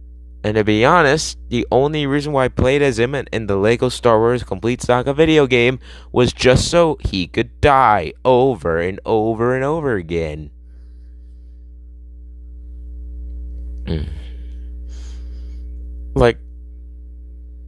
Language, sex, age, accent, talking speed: English, male, 30-49, American, 115 wpm